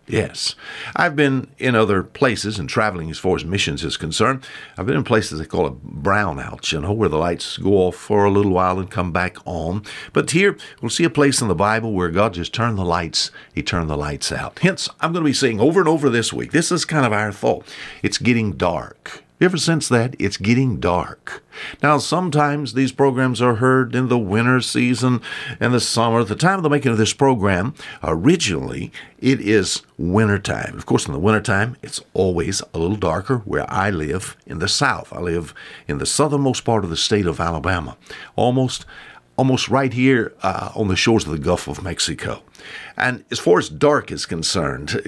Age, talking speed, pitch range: 60-79, 210 wpm, 95-135 Hz